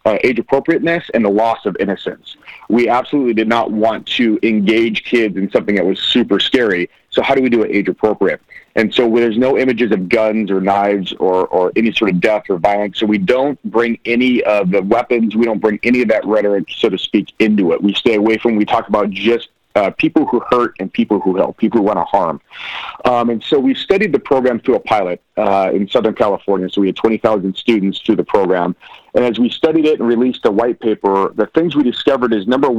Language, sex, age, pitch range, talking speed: English, male, 40-59, 105-125 Hz, 230 wpm